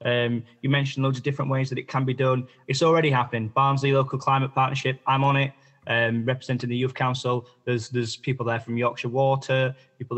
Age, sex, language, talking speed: 20-39, male, English, 205 wpm